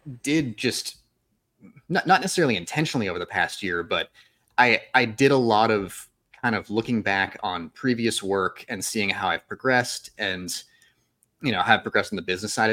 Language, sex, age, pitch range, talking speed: English, male, 30-49, 95-130 Hz, 175 wpm